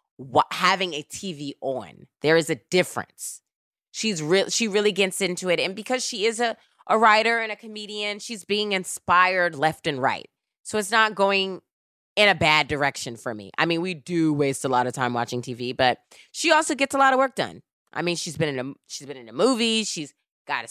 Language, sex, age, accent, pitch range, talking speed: English, female, 20-39, American, 155-235 Hz, 215 wpm